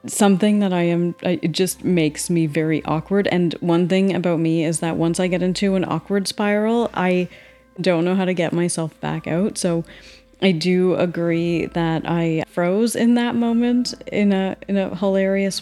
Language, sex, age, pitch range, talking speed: English, female, 30-49, 170-205 Hz, 185 wpm